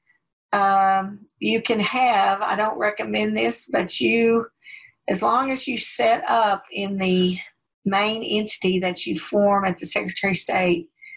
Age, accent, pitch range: 50-69, American, 185-235 Hz